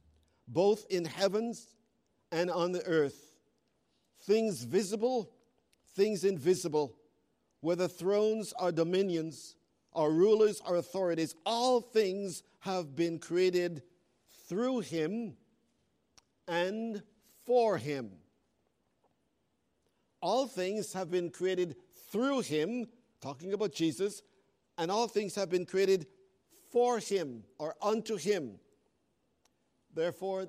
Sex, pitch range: male, 165-210 Hz